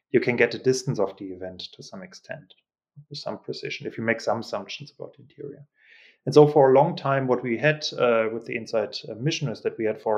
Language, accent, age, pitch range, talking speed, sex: English, German, 30-49, 115-145 Hz, 240 wpm, male